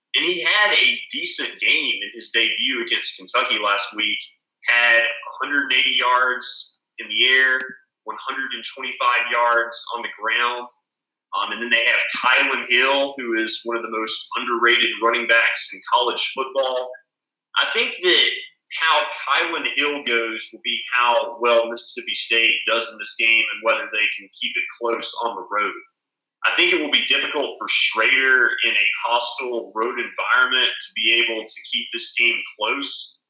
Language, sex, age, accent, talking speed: English, male, 30-49, American, 165 wpm